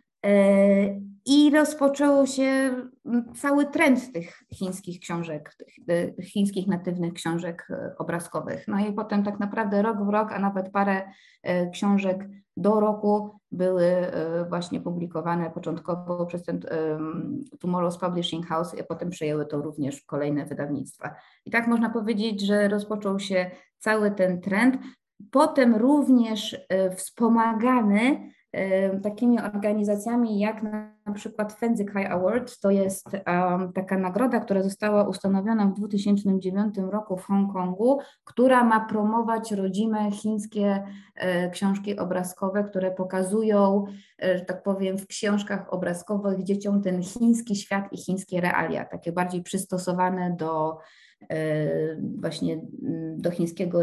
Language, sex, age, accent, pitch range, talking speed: Polish, female, 20-39, native, 180-215 Hz, 120 wpm